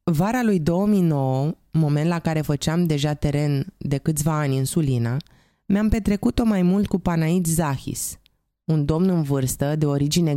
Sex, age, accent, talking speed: female, 20-39, native, 155 wpm